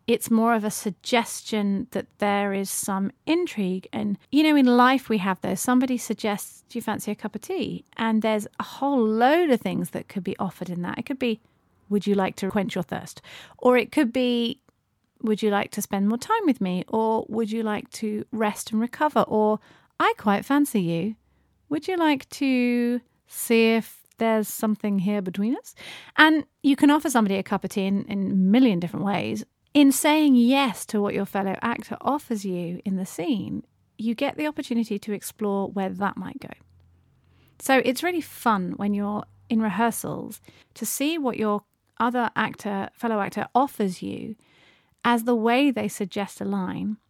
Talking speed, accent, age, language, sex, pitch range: 190 wpm, British, 40-59, English, female, 200-250 Hz